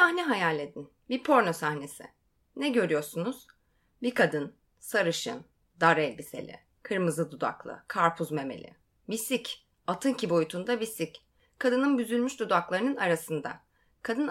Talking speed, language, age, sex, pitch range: 115 wpm, Turkish, 30-49, female, 175-260 Hz